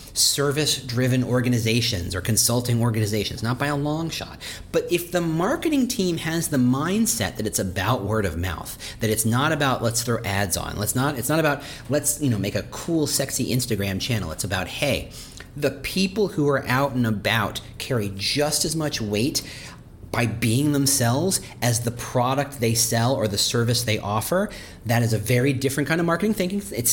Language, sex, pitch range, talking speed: English, male, 110-155 Hz, 190 wpm